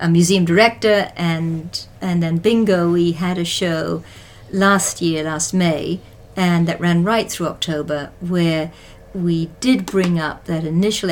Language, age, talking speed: English, 50-69, 150 wpm